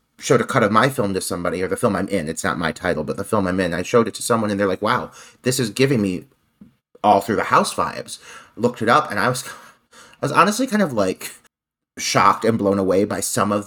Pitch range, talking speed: 105-145 Hz, 260 wpm